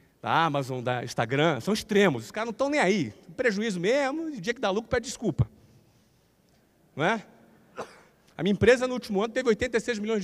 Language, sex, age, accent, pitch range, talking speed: Portuguese, male, 40-59, Brazilian, 155-230 Hz, 190 wpm